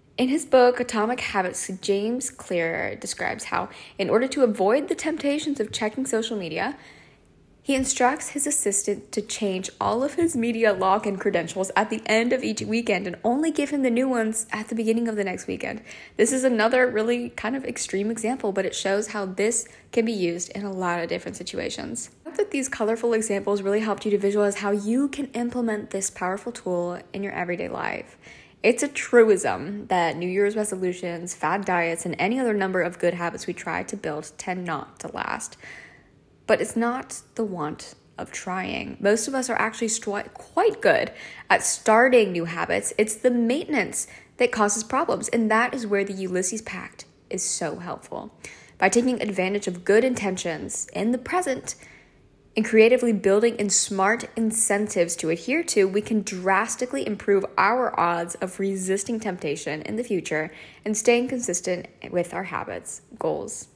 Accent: American